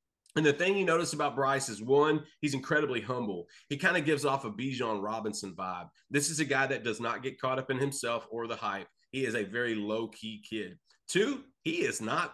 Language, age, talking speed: English, 30-49, 225 wpm